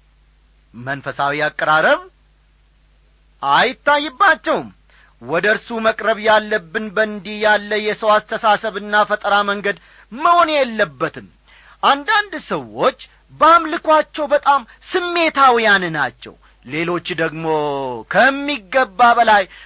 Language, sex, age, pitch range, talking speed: Amharic, male, 40-59, 165-245 Hz, 75 wpm